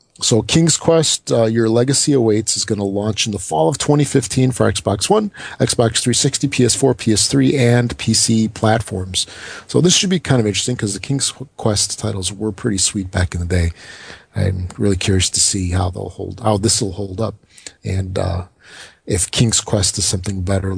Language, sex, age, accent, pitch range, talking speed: English, male, 40-59, American, 105-135 Hz, 190 wpm